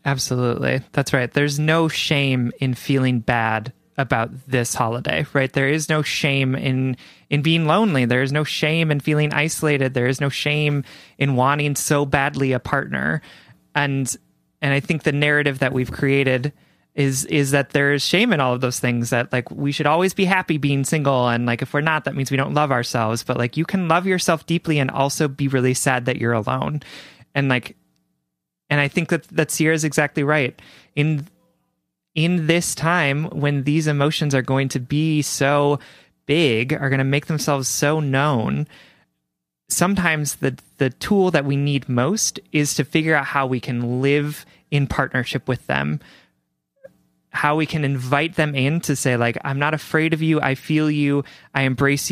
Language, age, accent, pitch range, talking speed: English, 20-39, American, 130-150 Hz, 185 wpm